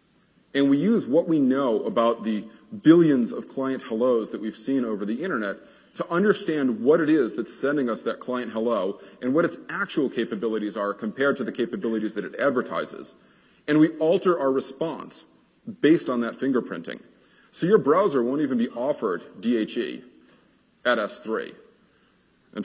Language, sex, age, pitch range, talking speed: English, male, 40-59, 110-160 Hz, 165 wpm